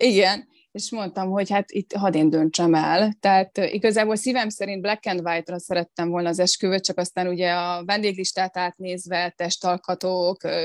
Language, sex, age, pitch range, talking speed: Hungarian, female, 20-39, 175-200 Hz, 160 wpm